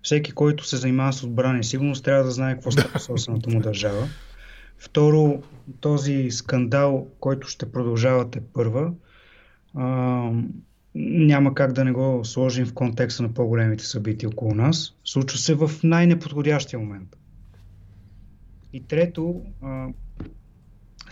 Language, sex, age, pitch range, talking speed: English, male, 30-49, 120-145 Hz, 125 wpm